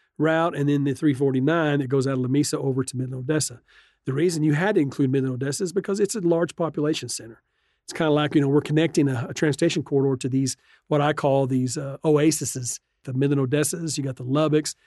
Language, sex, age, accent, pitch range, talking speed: English, male, 40-59, American, 135-160 Hz, 220 wpm